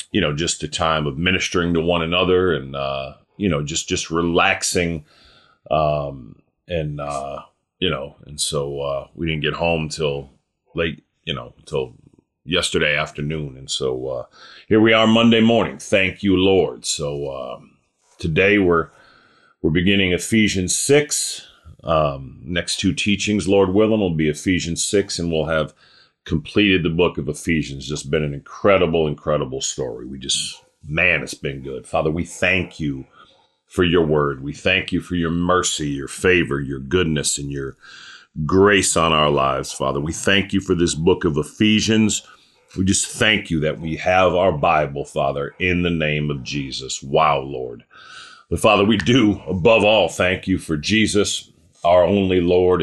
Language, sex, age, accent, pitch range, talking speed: English, male, 40-59, American, 75-95 Hz, 165 wpm